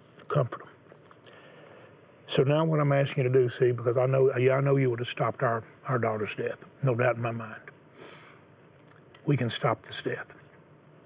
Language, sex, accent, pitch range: English, male, American, 120-145 Hz